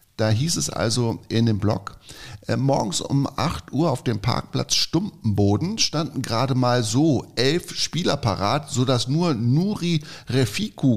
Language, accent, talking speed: German, German, 140 wpm